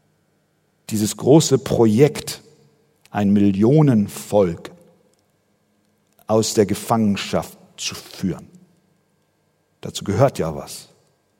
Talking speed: 75 wpm